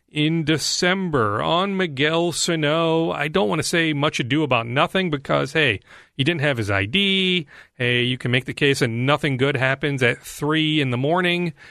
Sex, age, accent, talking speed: male, 40-59, American, 185 wpm